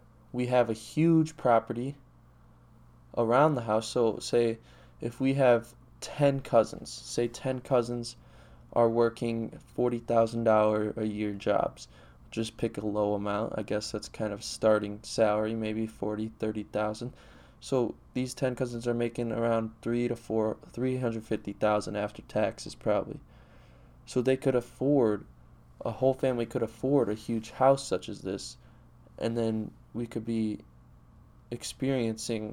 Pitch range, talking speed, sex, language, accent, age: 110-120 Hz, 150 wpm, male, English, American, 20-39